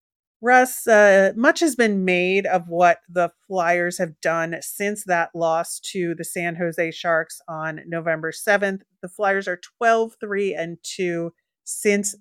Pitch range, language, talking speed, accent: 170-200 Hz, English, 140 wpm, American